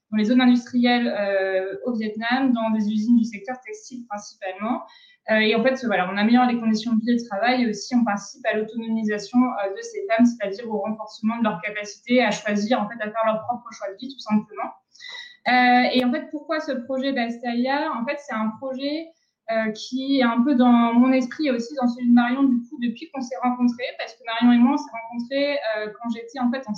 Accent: French